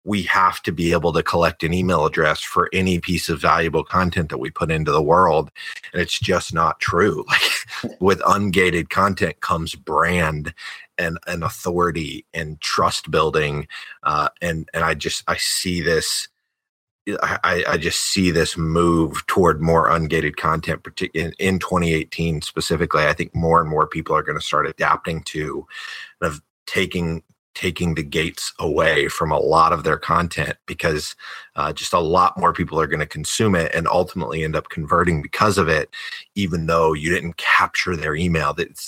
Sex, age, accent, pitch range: male, 30-49, American, 80-95 Hz